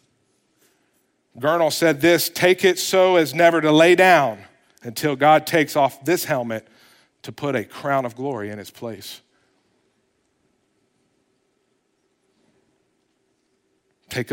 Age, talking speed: 50-69, 115 wpm